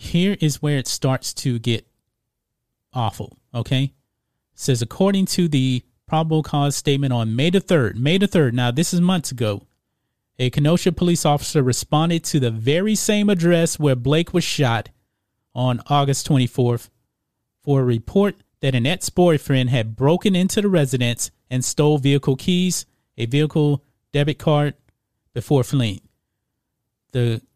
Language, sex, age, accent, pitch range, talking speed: English, male, 30-49, American, 125-165 Hz, 145 wpm